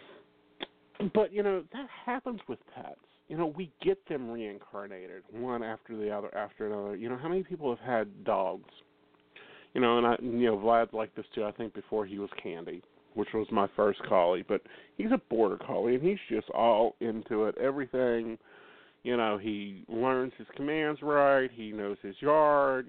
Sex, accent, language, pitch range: male, American, English, 110-165 Hz